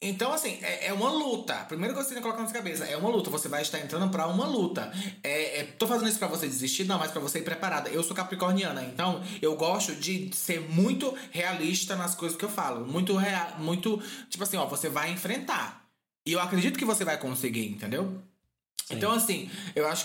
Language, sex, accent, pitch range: Portuguese, male, Brazilian, 155-190 Hz